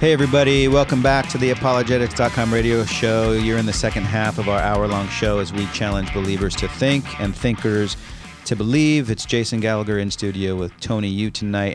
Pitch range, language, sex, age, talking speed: 90-110 Hz, English, male, 40-59, 190 wpm